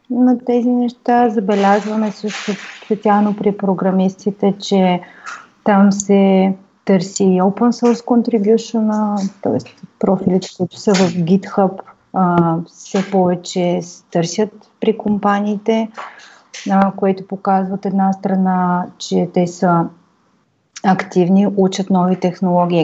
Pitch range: 180-210 Hz